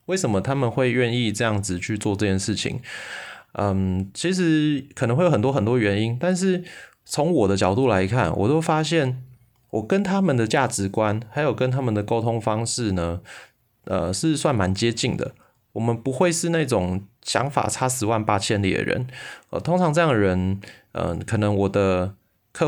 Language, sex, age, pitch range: Chinese, male, 20-39, 100-135 Hz